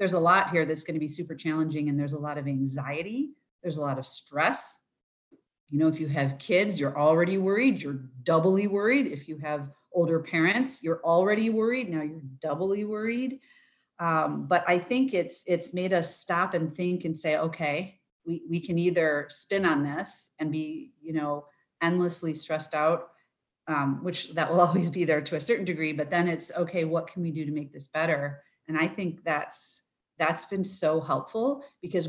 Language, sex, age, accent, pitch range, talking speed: English, female, 40-59, American, 155-180 Hz, 195 wpm